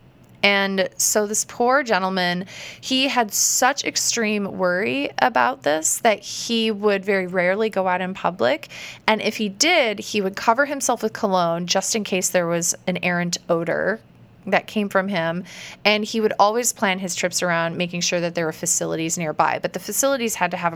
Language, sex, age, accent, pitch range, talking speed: English, female, 20-39, American, 175-220 Hz, 185 wpm